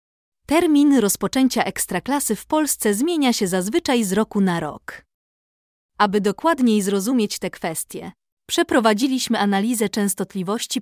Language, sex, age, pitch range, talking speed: Polish, female, 20-39, 195-255 Hz, 110 wpm